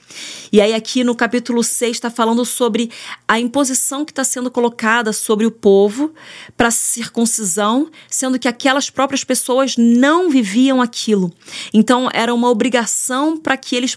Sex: female